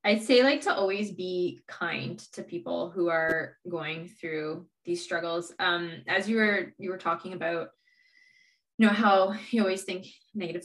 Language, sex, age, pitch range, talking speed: English, female, 20-39, 170-215 Hz, 170 wpm